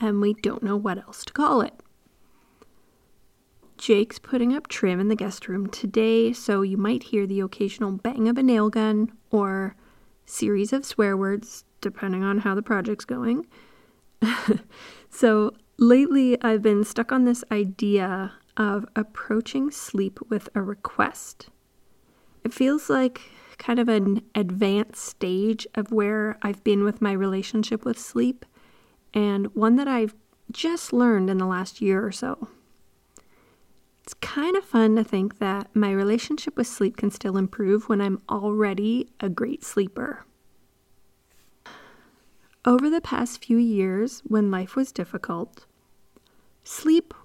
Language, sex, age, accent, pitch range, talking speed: English, female, 30-49, American, 200-235 Hz, 145 wpm